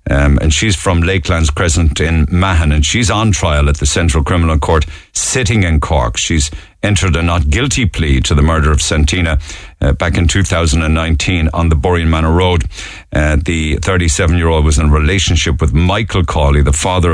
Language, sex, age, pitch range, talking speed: English, male, 50-69, 80-95 Hz, 180 wpm